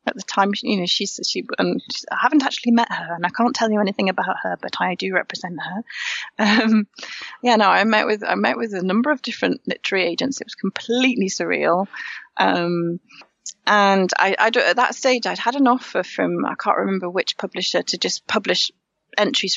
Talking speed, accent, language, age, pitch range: 200 wpm, British, English, 30-49, 175-230 Hz